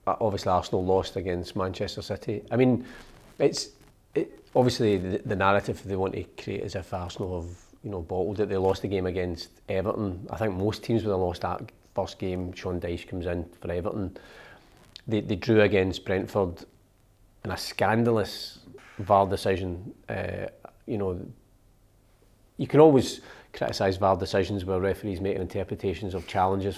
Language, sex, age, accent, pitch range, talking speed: English, male, 40-59, British, 95-115 Hz, 165 wpm